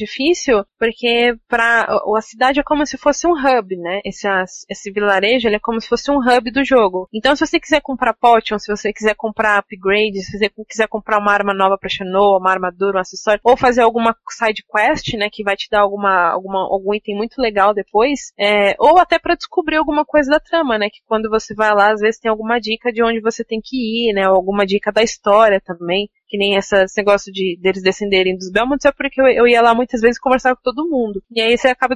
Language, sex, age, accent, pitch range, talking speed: Portuguese, female, 20-39, Brazilian, 205-255 Hz, 230 wpm